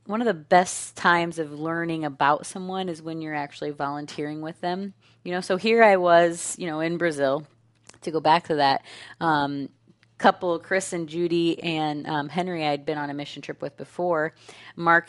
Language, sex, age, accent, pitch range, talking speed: English, female, 30-49, American, 150-185 Hz, 200 wpm